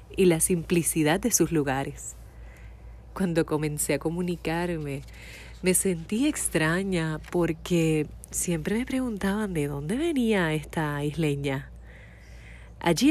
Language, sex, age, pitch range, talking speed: Spanish, female, 30-49, 155-180 Hz, 105 wpm